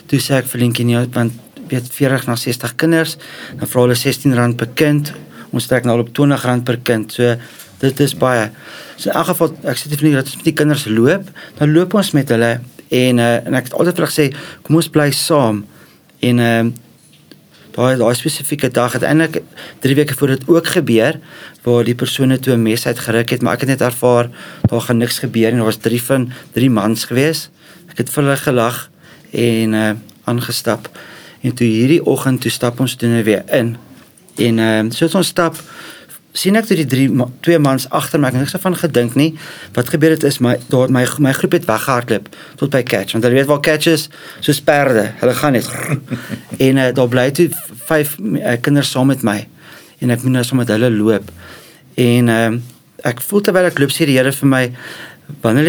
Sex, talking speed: male, 205 wpm